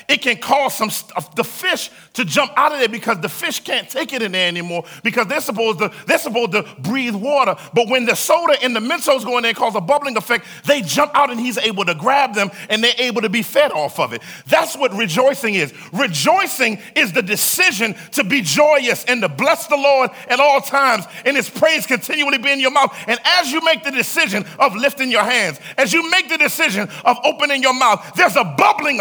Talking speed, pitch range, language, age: 230 wpm, 225-320 Hz, English, 40-59